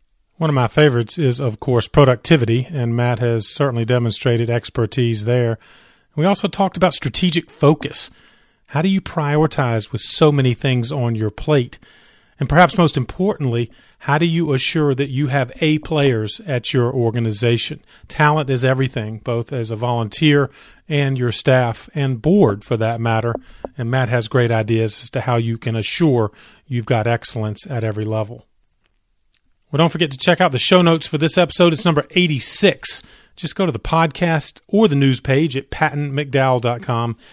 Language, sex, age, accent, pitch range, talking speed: English, male, 40-59, American, 115-155 Hz, 170 wpm